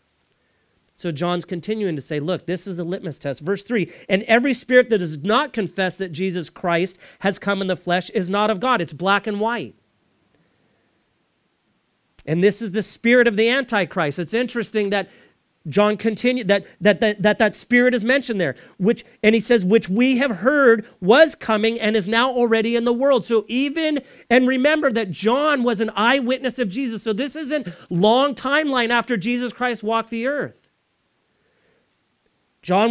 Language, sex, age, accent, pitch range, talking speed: English, male, 40-59, American, 185-260 Hz, 175 wpm